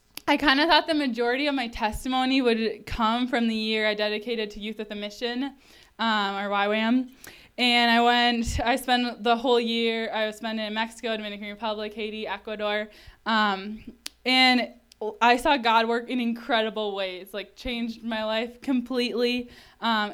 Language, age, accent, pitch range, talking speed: English, 10-29, American, 220-255 Hz, 165 wpm